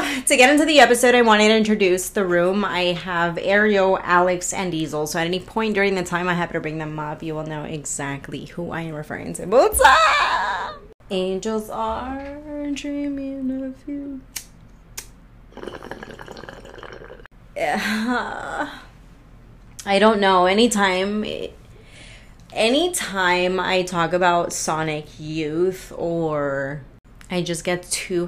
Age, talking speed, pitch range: 20-39, 130 wpm, 155-210 Hz